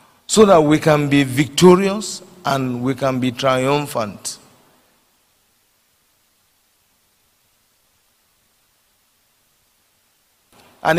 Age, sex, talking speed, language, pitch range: 50-69, male, 65 wpm, English, 135-185 Hz